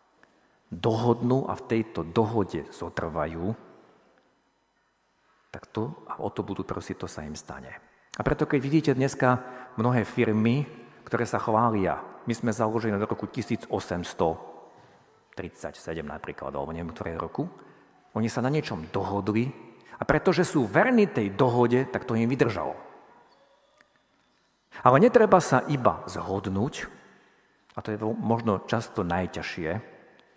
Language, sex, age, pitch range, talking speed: Slovak, male, 50-69, 95-125 Hz, 125 wpm